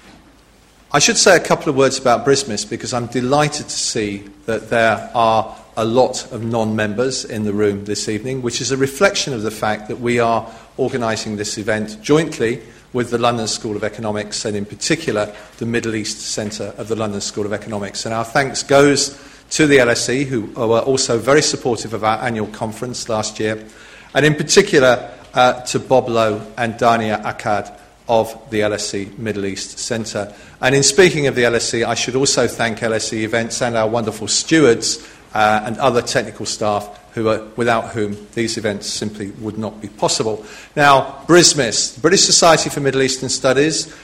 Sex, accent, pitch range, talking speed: male, British, 110-135 Hz, 180 wpm